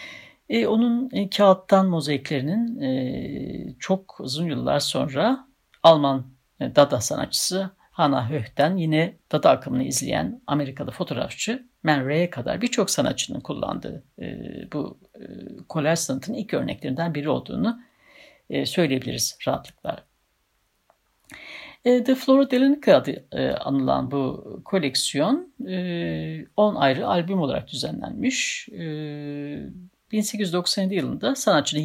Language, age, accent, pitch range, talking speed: Turkish, 60-79, native, 145-215 Hz, 110 wpm